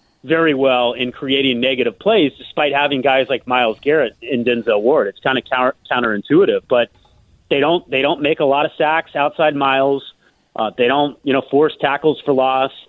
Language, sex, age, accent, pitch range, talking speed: English, male, 30-49, American, 130-160 Hz, 190 wpm